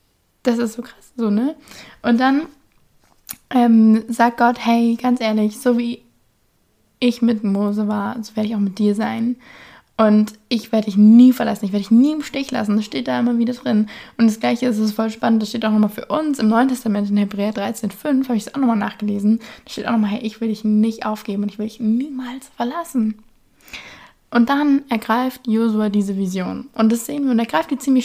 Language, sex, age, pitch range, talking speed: German, female, 20-39, 215-245 Hz, 220 wpm